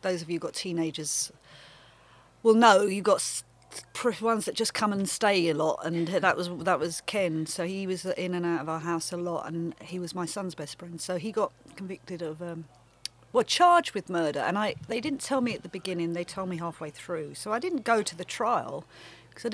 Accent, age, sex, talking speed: British, 40-59, female, 230 wpm